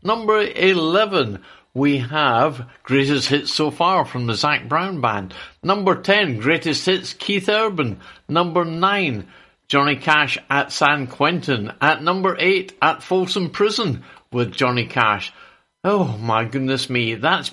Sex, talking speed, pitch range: male, 135 wpm, 145-195 Hz